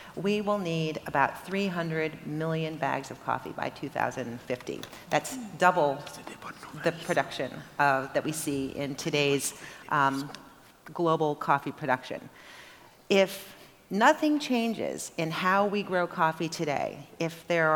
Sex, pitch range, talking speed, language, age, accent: female, 145-180 Hz, 120 wpm, English, 40-59, American